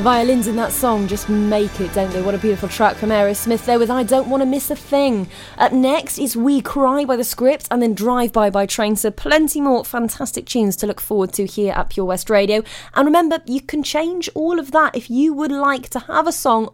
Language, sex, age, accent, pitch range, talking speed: English, female, 20-39, British, 195-255 Hz, 245 wpm